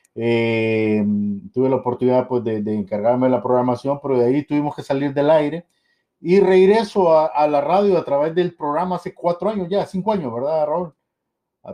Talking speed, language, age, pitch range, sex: 195 wpm, Spanish, 50-69, 140-185 Hz, male